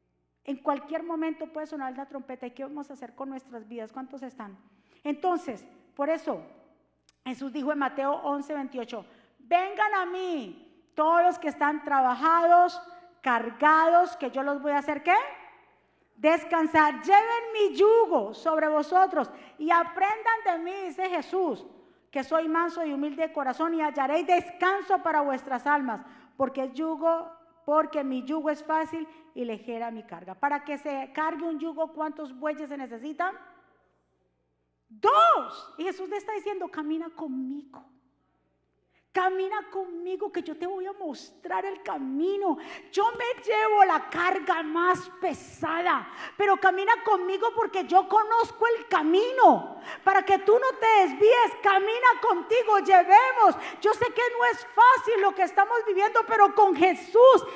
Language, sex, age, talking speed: Spanish, female, 40-59, 150 wpm